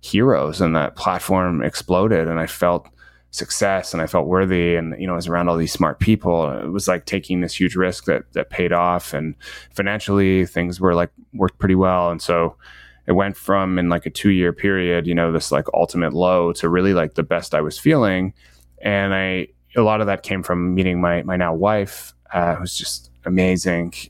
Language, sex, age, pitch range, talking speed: English, male, 20-39, 85-100 Hz, 205 wpm